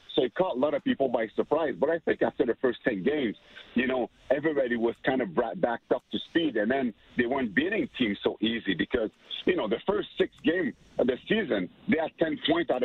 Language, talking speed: English, 235 wpm